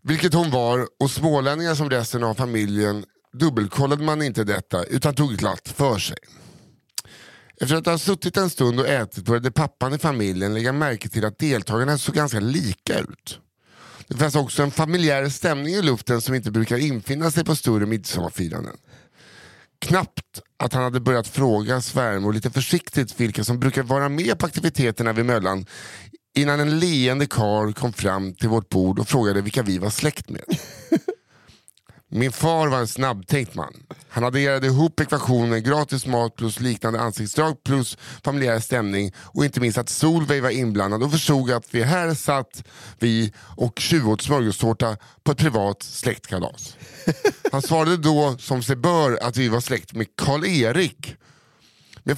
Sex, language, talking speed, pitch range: male, English, 165 wpm, 115-150 Hz